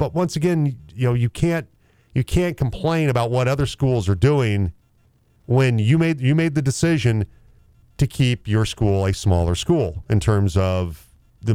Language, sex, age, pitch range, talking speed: English, male, 40-59, 105-135 Hz, 175 wpm